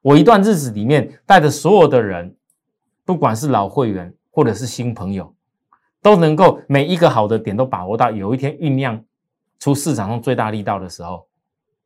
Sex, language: male, Chinese